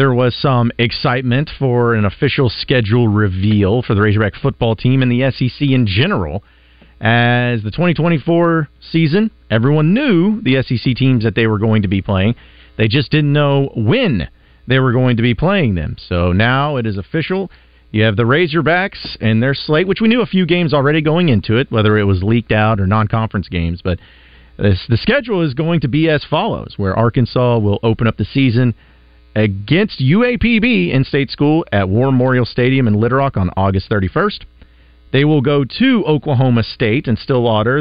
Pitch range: 100-140 Hz